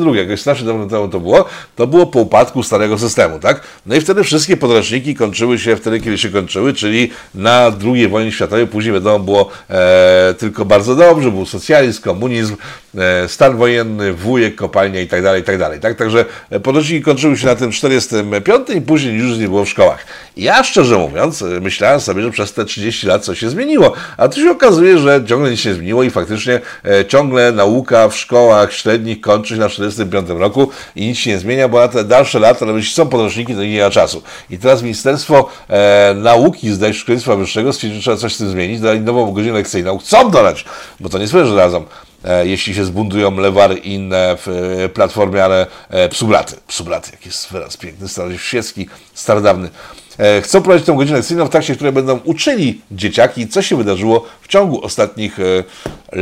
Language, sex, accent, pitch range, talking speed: Polish, male, native, 100-125 Hz, 195 wpm